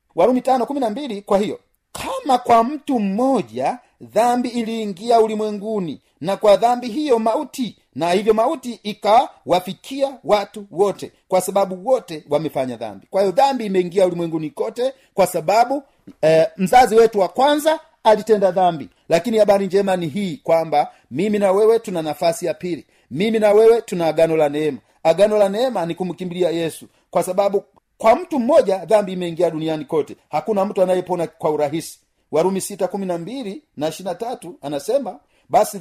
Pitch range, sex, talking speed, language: 165-225 Hz, male, 145 wpm, Swahili